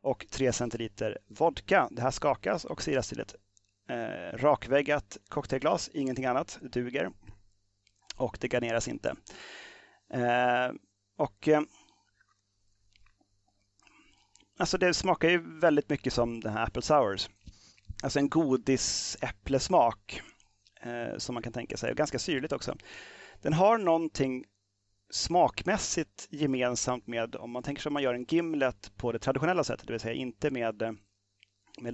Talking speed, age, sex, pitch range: 140 wpm, 30-49, male, 100-140 Hz